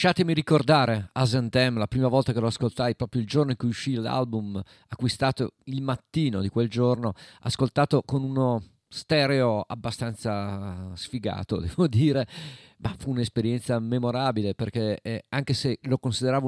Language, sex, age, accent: Italian, male, 50-69, native